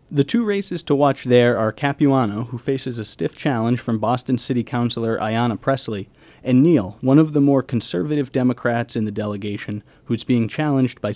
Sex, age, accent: male, 30-49, American